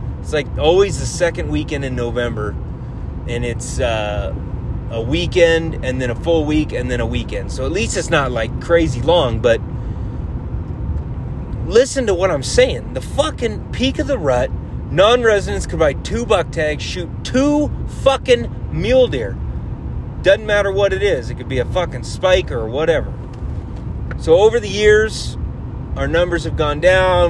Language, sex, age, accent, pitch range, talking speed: English, male, 30-49, American, 120-165 Hz, 165 wpm